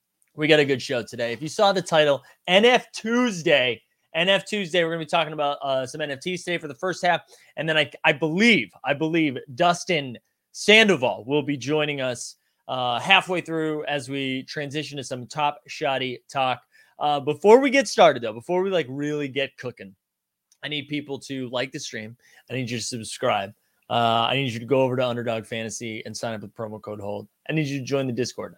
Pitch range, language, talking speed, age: 130-190 Hz, English, 210 wpm, 20-39